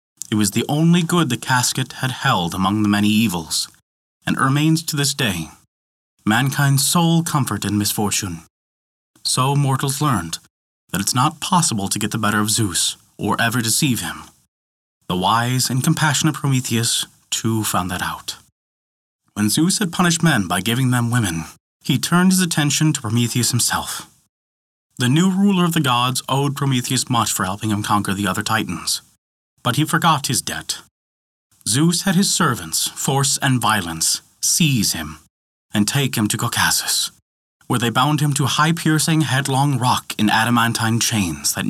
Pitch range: 105-150 Hz